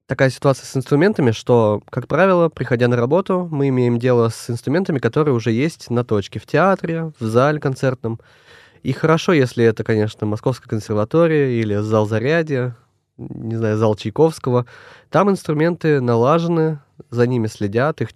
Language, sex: Russian, male